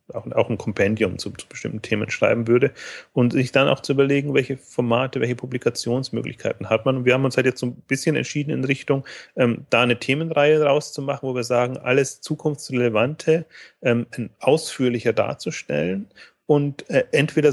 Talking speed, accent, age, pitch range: 170 wpm, German, 30-49, 115-135 Hz